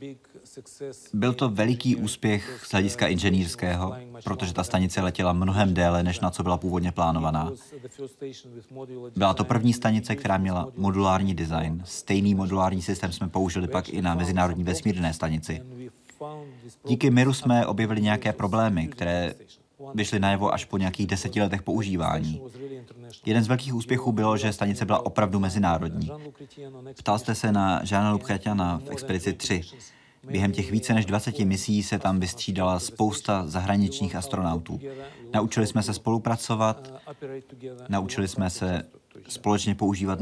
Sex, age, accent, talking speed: male, 30-49, native, 140 wpm